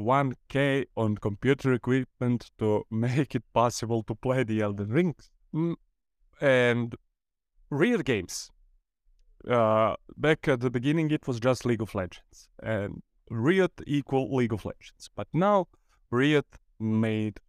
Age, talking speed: 30-49, 130 wpm